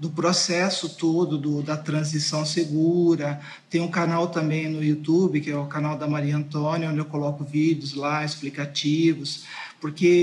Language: Portuguese